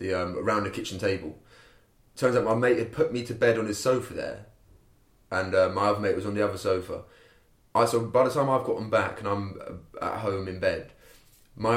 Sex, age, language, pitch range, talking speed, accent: male, 20-39, English, 95-120 Hz, 220 wpm, British